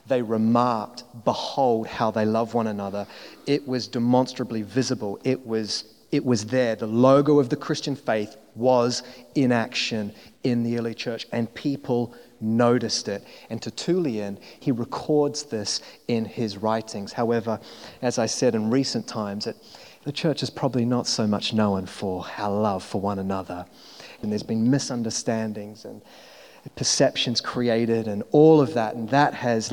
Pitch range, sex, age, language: 110-130 Hz, male, 30-49, English